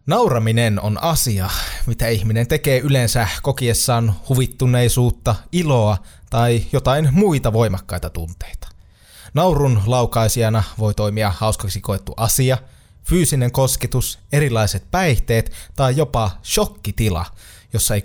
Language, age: Finnish, 20-39